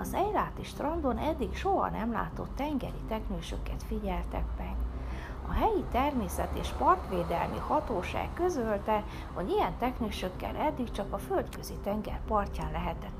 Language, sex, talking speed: Hungarian, female, 125 wpm